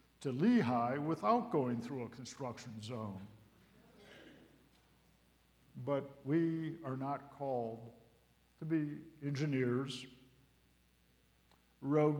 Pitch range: 100-140 Hz